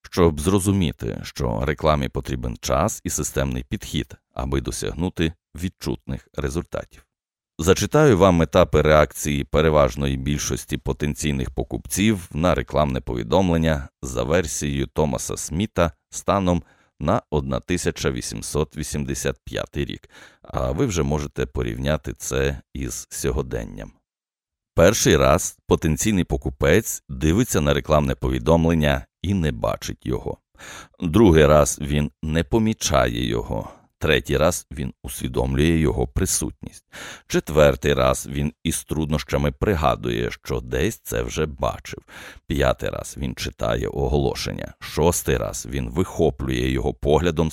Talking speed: 110 wpm